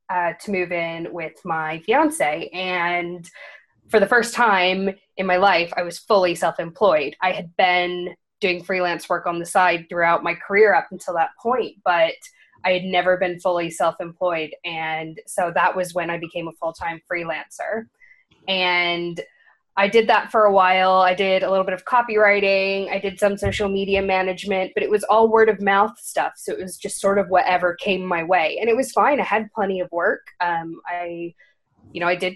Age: 20-39